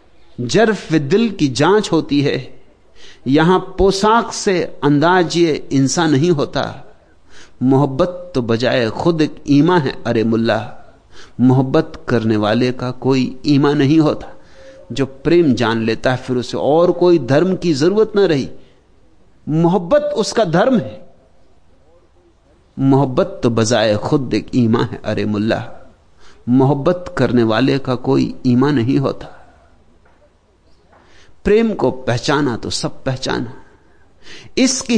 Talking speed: 110 wpm